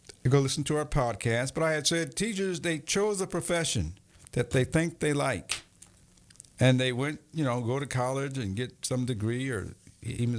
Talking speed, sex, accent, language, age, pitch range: 195 wpm, male, American, English, 50-69, 115-155 Hz